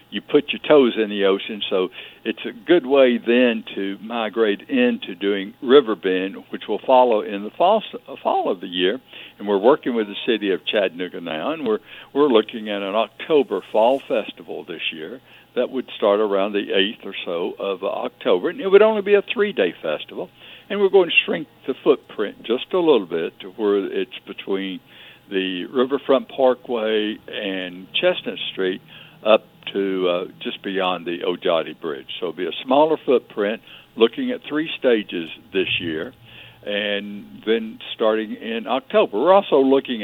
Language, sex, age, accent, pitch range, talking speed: English, male, 60-79, American, 95-150 Hz, 175 wpm